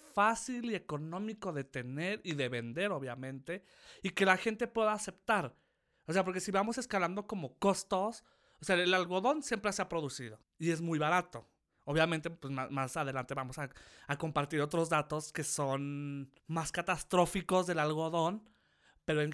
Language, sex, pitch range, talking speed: Spanish, male, 145-190 Hz, 170 wpm